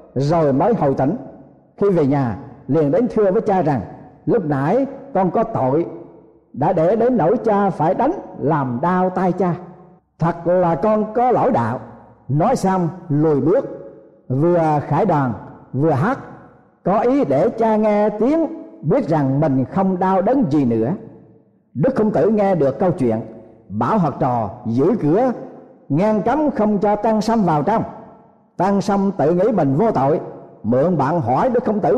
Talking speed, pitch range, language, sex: 170 wpm, 155-225 Hz, Vietnamese, male